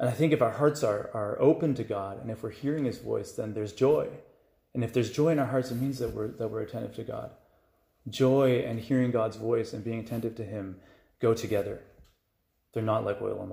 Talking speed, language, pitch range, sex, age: 235 wpm, English, 100-115 Hz, male, 30-49